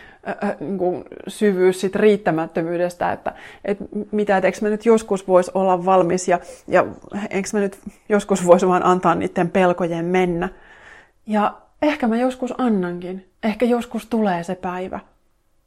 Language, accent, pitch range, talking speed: Finnish, native, 180-230 Hz, 125 wpm